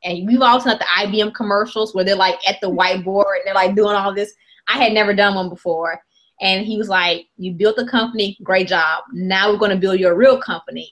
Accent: American